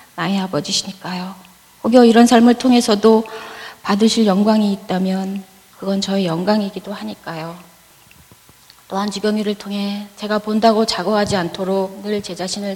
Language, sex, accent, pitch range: Korean, female, native, 185-215 Hz